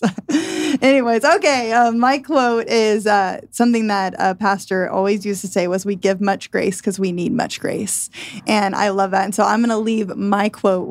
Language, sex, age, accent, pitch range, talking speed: English, female, 10-29, American, 195-225 Hz, 205 wpm